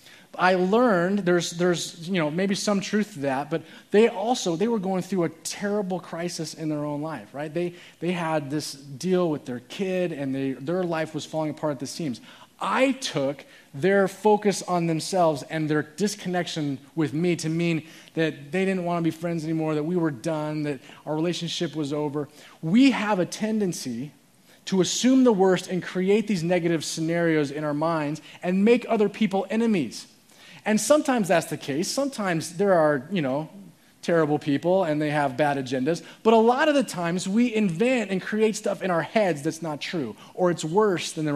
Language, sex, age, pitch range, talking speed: English, male, 30-49, 155-205 Hz, 195 wpm